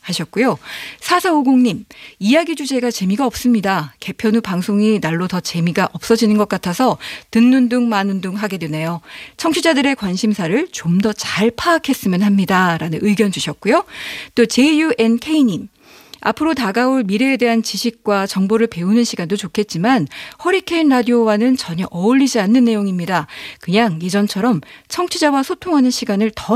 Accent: native